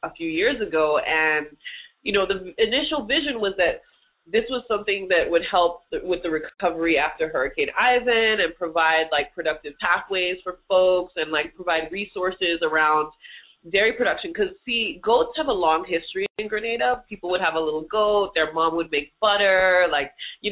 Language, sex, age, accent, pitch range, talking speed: English, female, 20-39, American, 170-270 Hz, 175 wpm